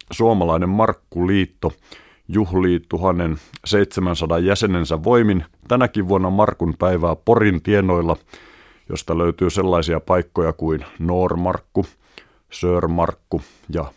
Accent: native